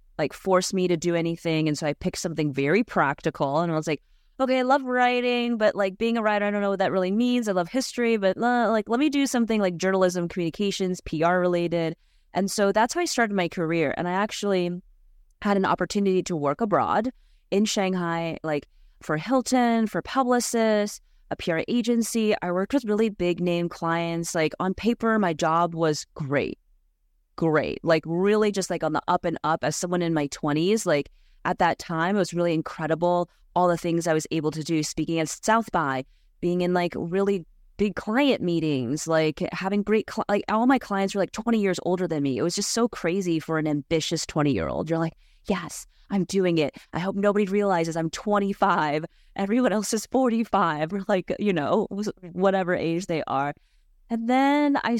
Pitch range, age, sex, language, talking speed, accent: 165-210 Hz, 20-39, female, English, 195 wpm, American